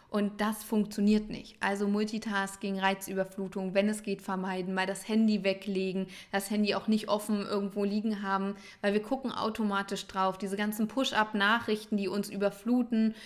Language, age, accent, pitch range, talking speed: German, 20-39, German, 195-220 Hz, 155 wpm